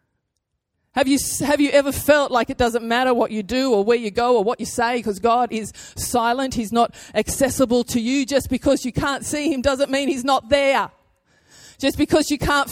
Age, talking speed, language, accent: 30-49, 210 wpm, English, Australian